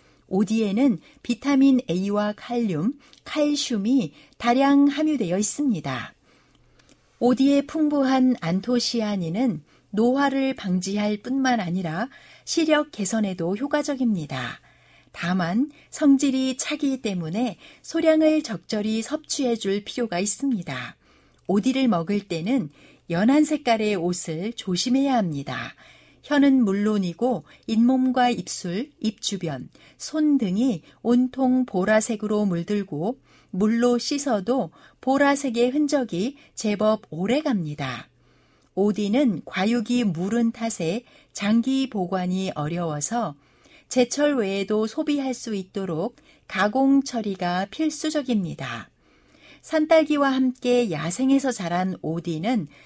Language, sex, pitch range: Korean, female, 190-265 Hz